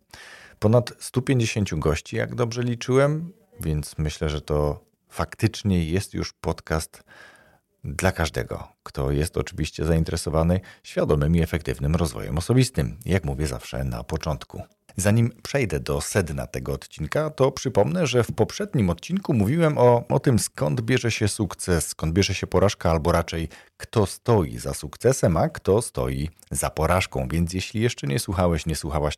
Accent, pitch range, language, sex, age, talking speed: native, 80-105 Hz, Polish, male, 40-59, 150 wpm